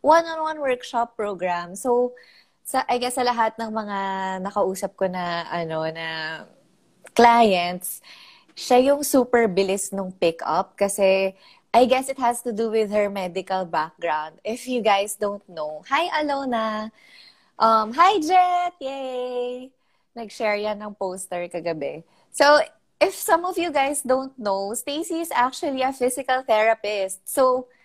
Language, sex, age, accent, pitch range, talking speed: Filipino, female, 20-39, native, 185-260 Hz, 140 wpm